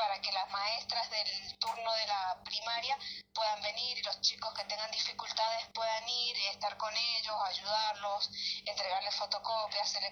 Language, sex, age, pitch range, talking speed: Spanish, female, 20-39, 195-225 Hz, 160 wpm